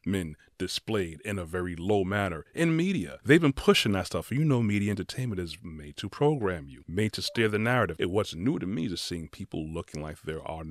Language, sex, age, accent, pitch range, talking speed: English, male, 30-49, American, 85-110 Hz, 225 wpm